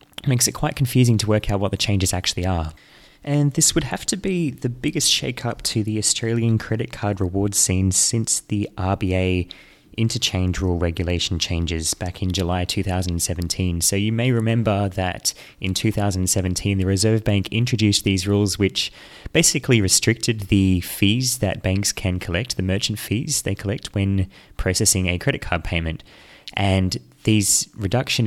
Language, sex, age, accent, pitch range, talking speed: English, male, 20-39, Australian, 90-115 Hz, 160 wpm